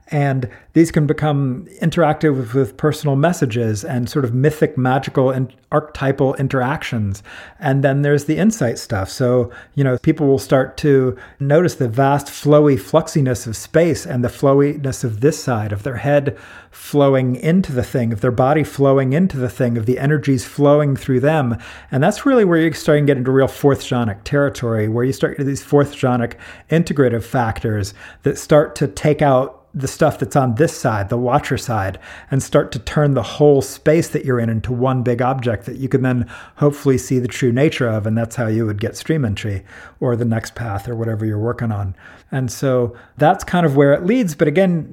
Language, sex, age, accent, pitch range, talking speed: English, male, 40-59, American, 120-145 Hz, 205 wpm